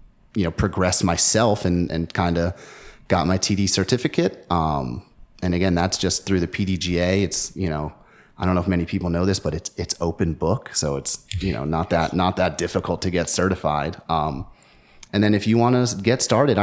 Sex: male